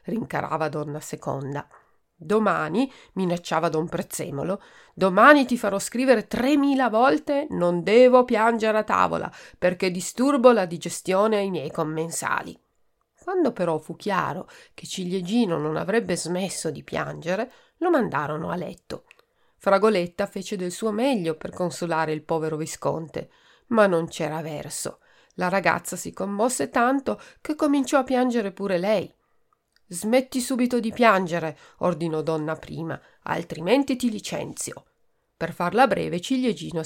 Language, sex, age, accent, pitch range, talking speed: Italian, female, 40-59, native, 165-245 Hz, 130 wpm